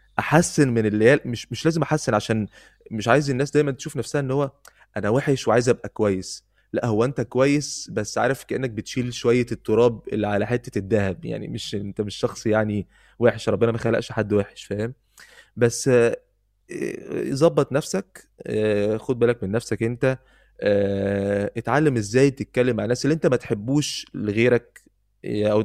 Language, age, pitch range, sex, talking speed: Arabic, 20-39, 105-135 Hz, male, 155 wpm